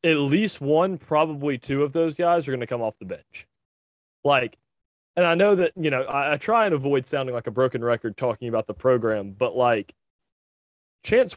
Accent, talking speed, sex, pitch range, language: American, 205 wpm, male, 125-165 Hz, English